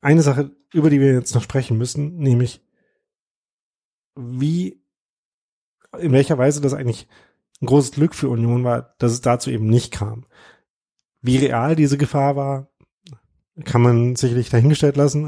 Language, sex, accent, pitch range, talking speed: German, male, German, 115-135 Hz, 150 wpm